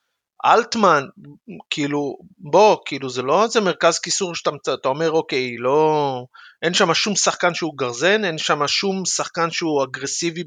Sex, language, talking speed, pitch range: male, Hebrew, 150 wpm, 135-195 Hz